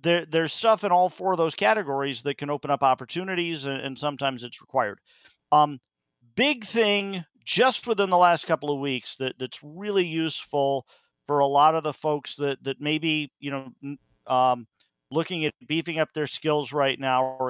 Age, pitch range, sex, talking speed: 50-69, 130-165 Hz, male, 190 wpm